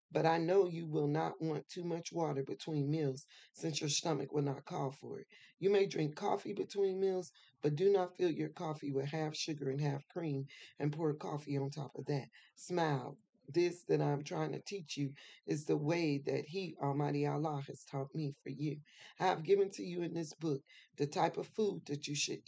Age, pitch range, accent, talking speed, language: 40-59, 140-175 Hz, American, 215 wpm, English